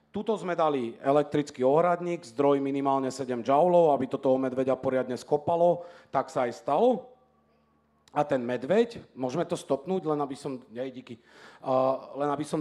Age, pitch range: 40-59, 125-145 Hz